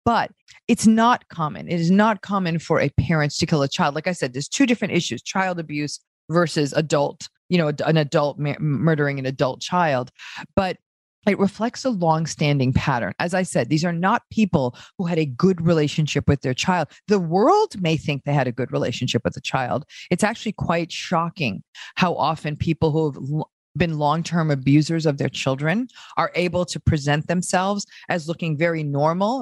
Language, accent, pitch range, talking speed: Hindi, American, 135-170 Hz, 190 wpm